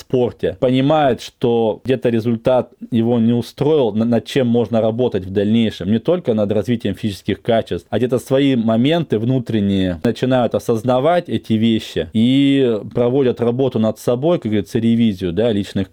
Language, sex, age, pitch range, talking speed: Russian, male, 20-39, 100-120 Hz, 145 wpm